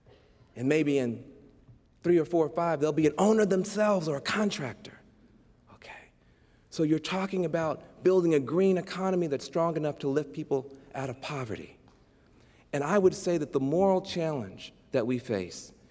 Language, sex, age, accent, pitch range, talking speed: English, male, 40-59, American, 145-205 Hz, 170 wpm